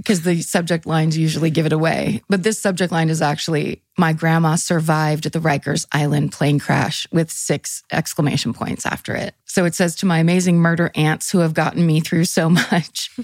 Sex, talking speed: female, 195 wpm